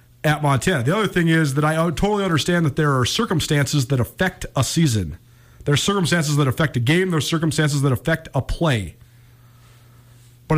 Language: English